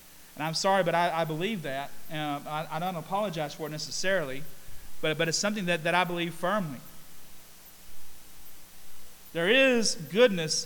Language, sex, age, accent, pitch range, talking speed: English, male, 40-59, American, 150-200 Hz, 160 wpm